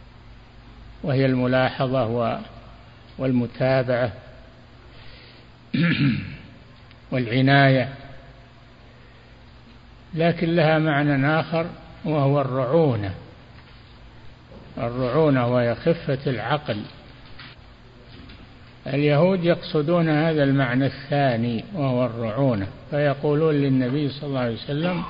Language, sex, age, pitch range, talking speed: Arabic, male, 60-79, 120-145 Hz, 65 wpm